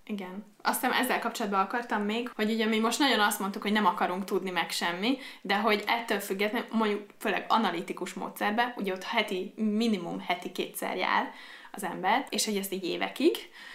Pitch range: 185-225 Hz